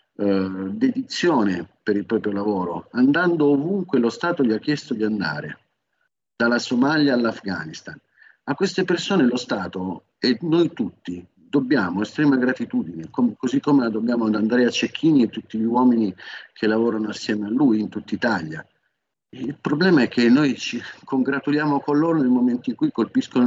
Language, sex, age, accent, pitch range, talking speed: Italian, male, 50-69, native, 105-145 Hz, 165 wpm